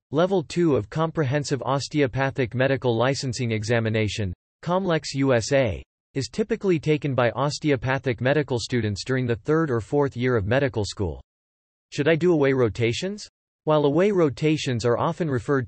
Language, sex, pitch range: English, male, 115-150 Hz